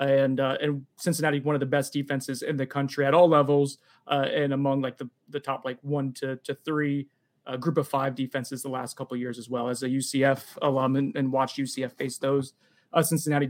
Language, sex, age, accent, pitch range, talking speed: English, male, 20-39, American, 135-155 Hz, 225 wpm